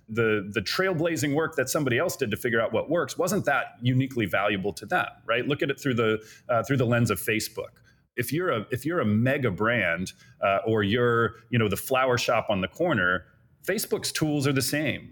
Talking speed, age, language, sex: 220 wpm, 30-49, English, male